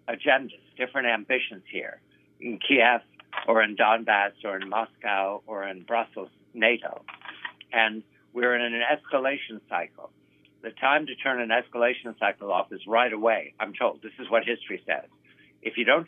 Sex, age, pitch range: male, 60-79, 110-135 Hz